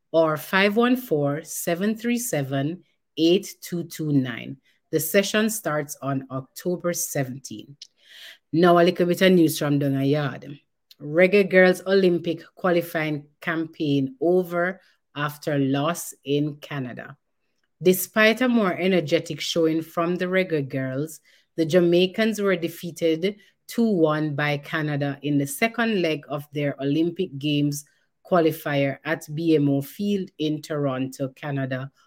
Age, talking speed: 30-49, 110 wpm